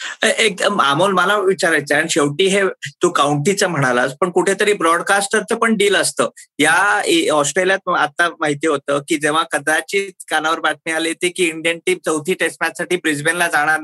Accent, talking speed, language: native, 160 wpm, Marathi